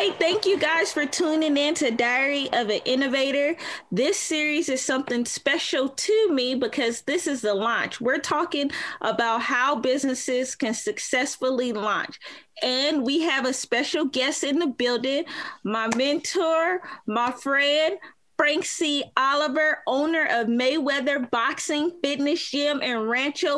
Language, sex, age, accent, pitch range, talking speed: English, female, 20-39, American, 255-310 Hz, 145 wpm